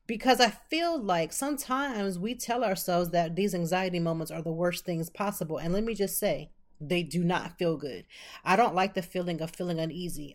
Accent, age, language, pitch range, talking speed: American, 30-49, English, 165-205 Hz, 205 wpm